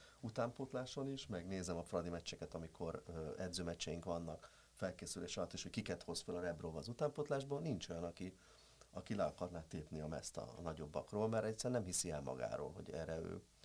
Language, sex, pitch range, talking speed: Hungarian, male, 85-100 Hz, 180 wpm